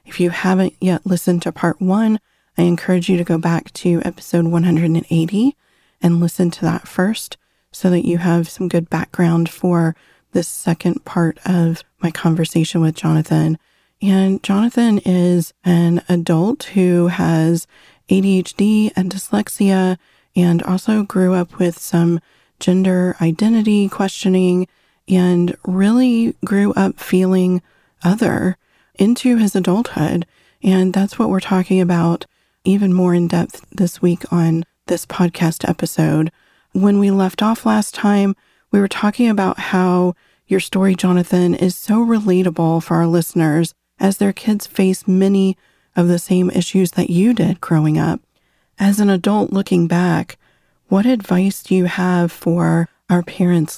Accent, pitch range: American, 170-195 Hz